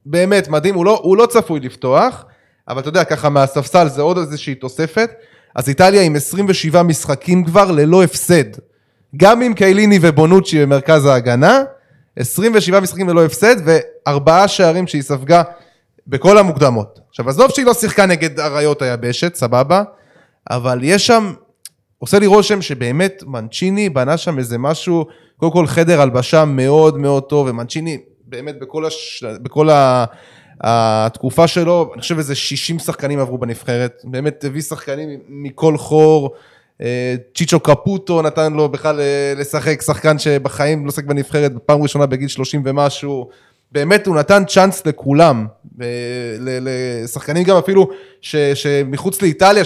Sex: male